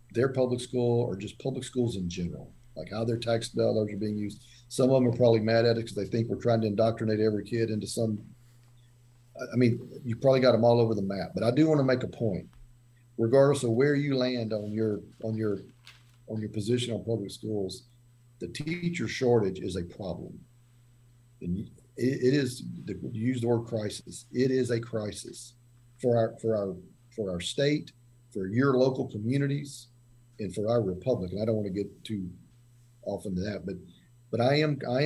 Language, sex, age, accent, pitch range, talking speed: English, male, 40-59, American, 105-125 Hz, 200 wpm